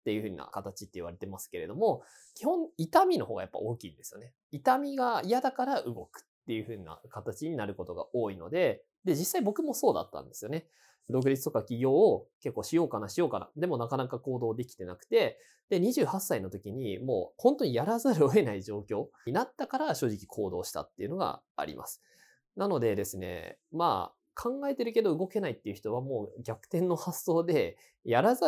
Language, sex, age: Japanese, male, 20-39